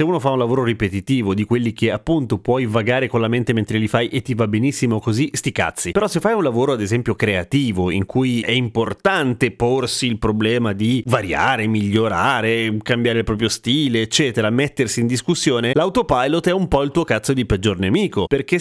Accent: native